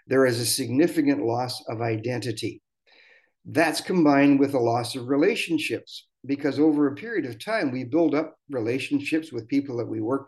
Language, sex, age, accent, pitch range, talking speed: English, male, 50-69, American, 120-150 Hz, 170 wpm